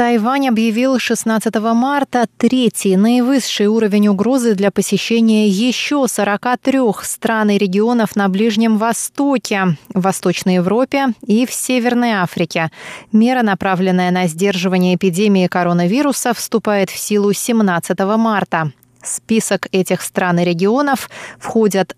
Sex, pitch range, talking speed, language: female, 185-230 Hz, 115 wpm, Russian